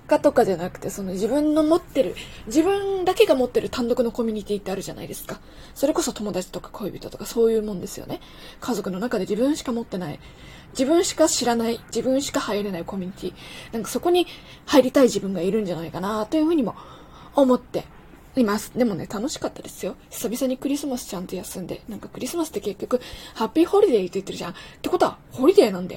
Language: Japanese